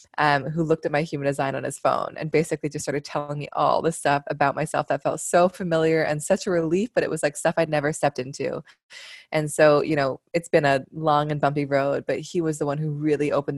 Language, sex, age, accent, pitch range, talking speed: English, female, 20-39, American, 140-160 Hz, 250 wpm